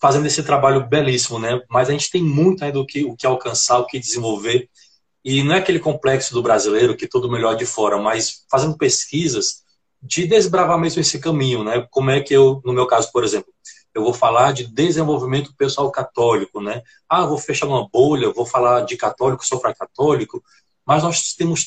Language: Portuguese